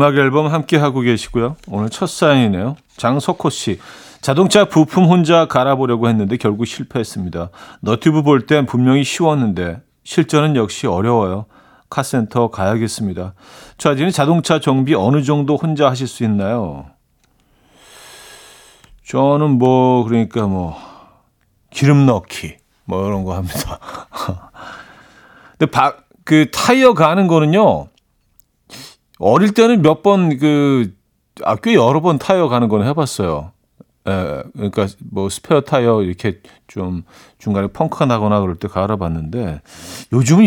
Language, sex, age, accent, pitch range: Korean, male, 40-59, native, 105-150 Hz